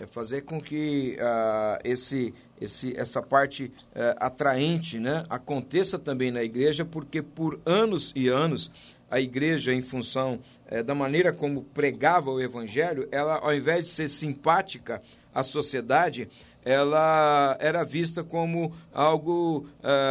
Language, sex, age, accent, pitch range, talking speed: Portuguese, male, 50-69, Brazilian, 130-160 Hz, 135 wpm